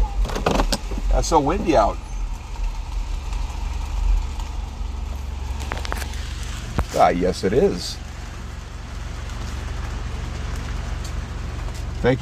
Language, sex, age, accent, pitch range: English, male, 40-59, American, 65-100 Hz